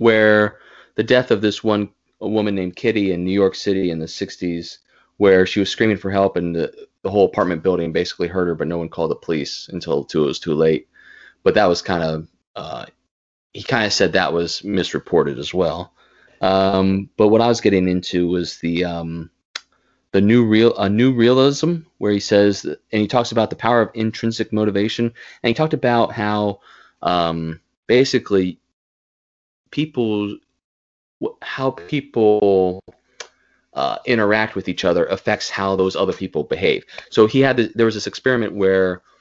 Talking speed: 180 wpm